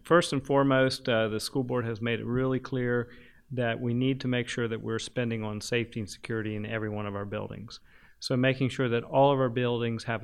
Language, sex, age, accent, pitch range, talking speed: English, male, 40-59, American, 110-125 Hz, 235 wpm